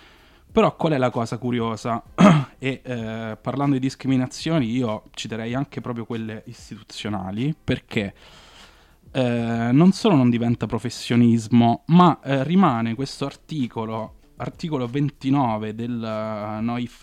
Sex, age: male, 20-39